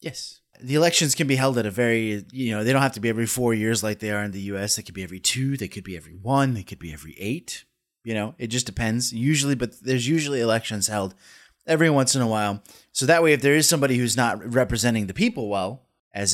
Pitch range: 105-135 Hz